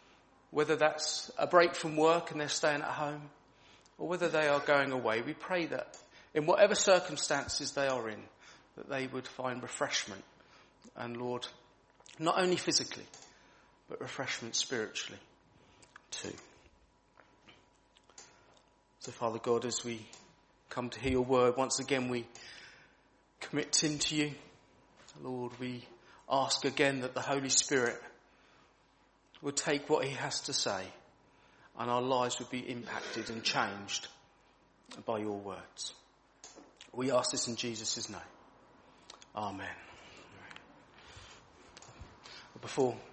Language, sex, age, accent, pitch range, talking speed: English, male, 40-59, British, 120-150 Hz, 130 wpm